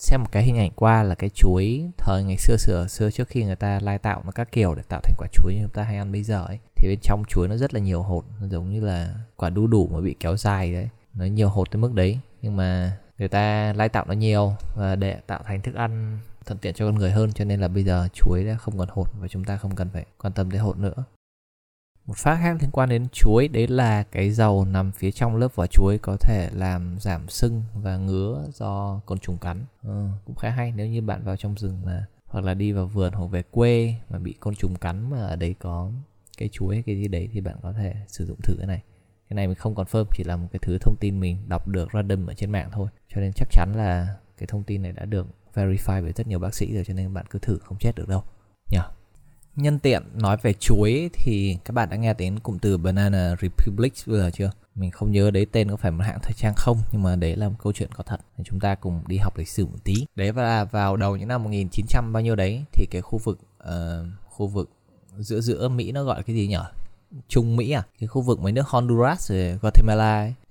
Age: 20-39